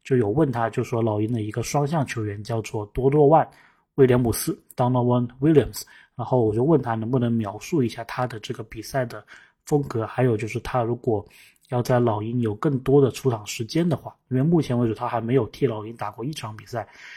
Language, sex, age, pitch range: Chinese, male, 20-39, 115-140 Hz